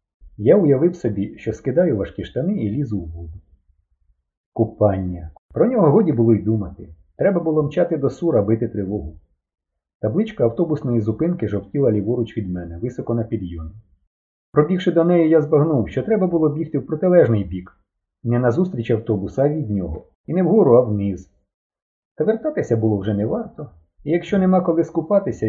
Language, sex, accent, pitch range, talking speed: Ukrainian, male, native, 95-150 Hz, 160 wpm